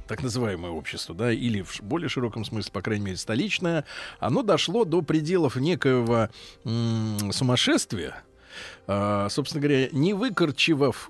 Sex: male